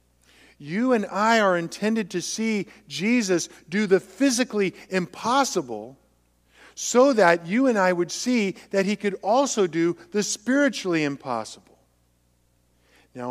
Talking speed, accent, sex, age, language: 125 wpm, American, male, 50-69, English